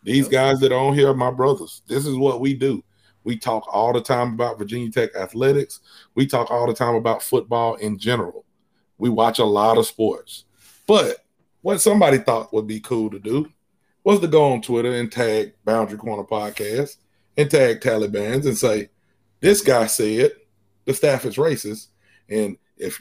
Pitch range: 110-150 Hz